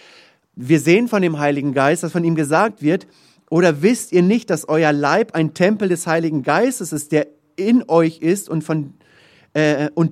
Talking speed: 190 wpm